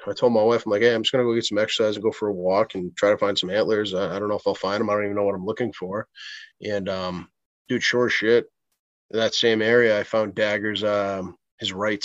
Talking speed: 285 wpm